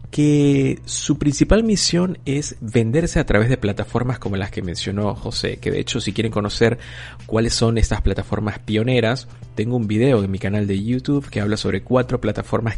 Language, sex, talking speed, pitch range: Spanish, male, 185 wpm, 100-135 Hz